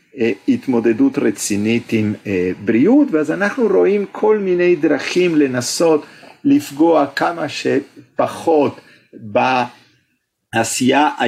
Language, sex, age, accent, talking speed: Hebrew, male, 50-69, Italian, 80 wpm